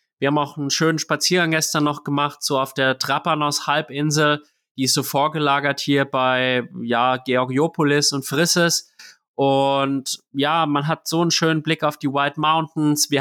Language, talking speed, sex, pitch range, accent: English, 165 wpm, male, 130-150 Hz, German